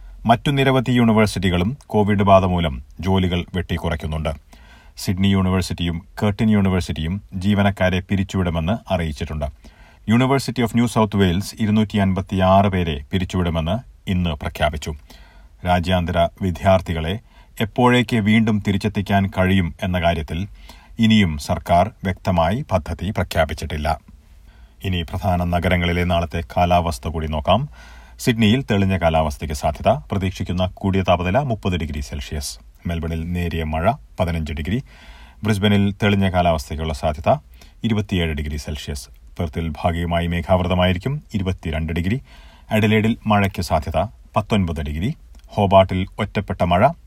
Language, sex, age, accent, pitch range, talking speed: Malayalam, male, 40-59, native, 80-100 Hz, 100 wpm